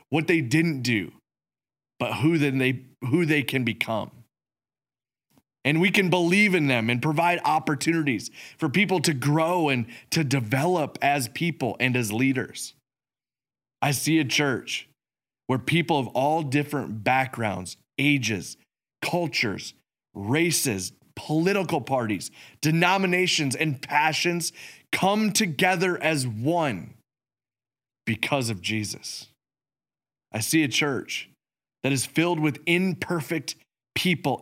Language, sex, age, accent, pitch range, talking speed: English, male, 30-49, American, 130-170 Hz, 120 wpm